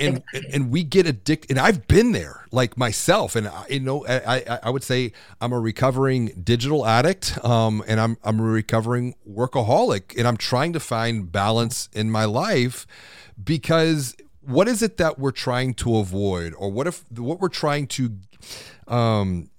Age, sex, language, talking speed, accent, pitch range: 30-49, male, English, 175 wpm, American, 105-135 Hz